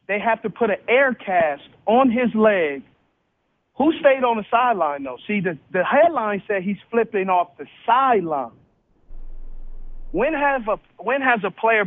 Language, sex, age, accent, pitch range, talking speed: English, male, 40-59, American, 185-230 Hz, 165 wpm